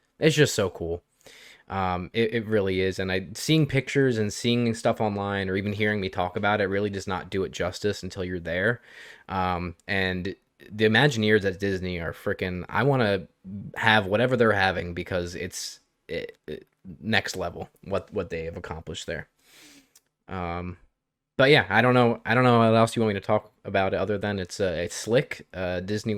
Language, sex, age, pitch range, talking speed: English, male, 20-39, 95-115 Hz, 195 wpm